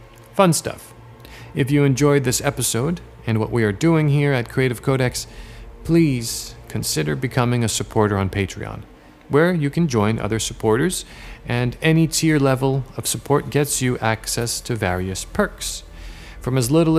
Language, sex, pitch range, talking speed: English, male, 105-135 Hz, 155 wpm